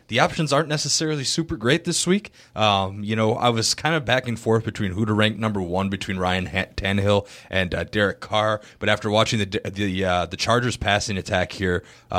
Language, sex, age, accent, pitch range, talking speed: English, male, 20-39, American, 90-110 Hz, 210 wpm